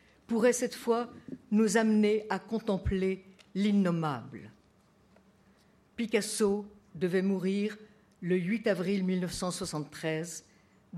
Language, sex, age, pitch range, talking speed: French, female, 60-79, 195-240 Hz, 80 wpm